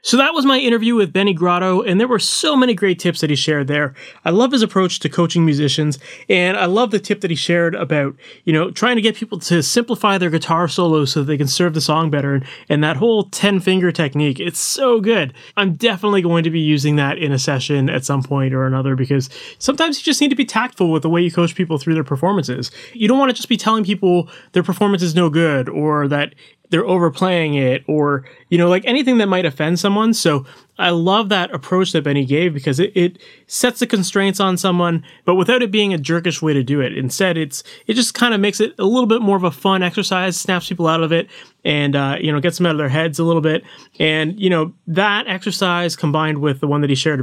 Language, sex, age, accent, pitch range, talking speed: English, male, 20-39, American, 150-195 Hz, 245 wpm